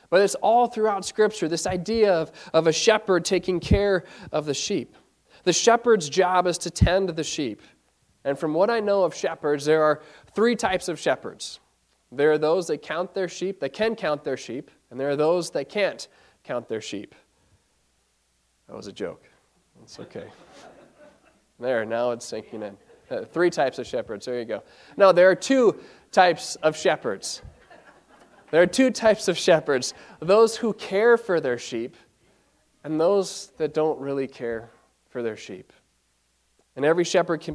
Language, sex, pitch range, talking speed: English, male, 150-200 Hz, 175 wpm